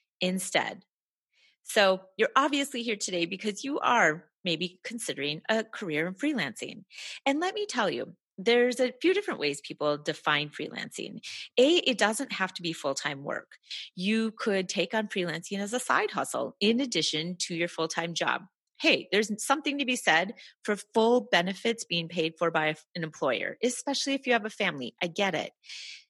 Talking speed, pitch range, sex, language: 175 wpm, 170-245 Hz, female, English